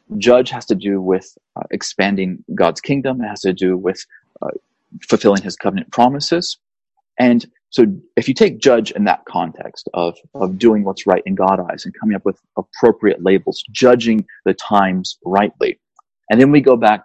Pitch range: 100-135 Hz